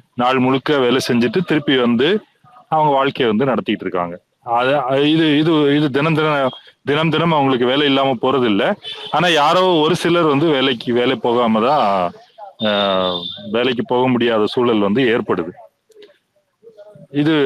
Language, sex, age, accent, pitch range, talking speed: Tamil, male, 30-49, native, 120-150 Hz, 115 wpm